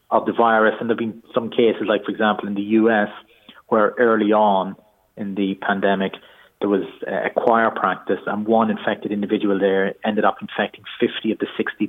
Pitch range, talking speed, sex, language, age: 105-130 Hz, 190 wpm, male, English, 30-49